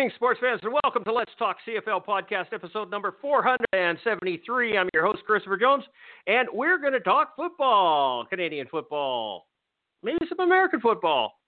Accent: American